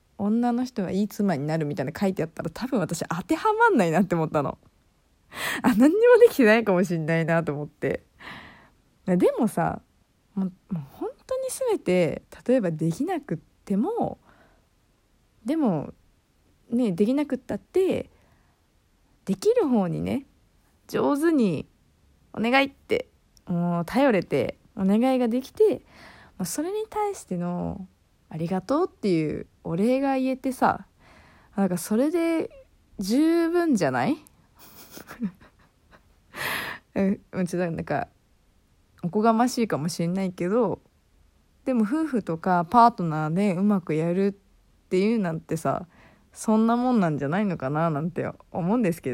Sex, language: female, Japanese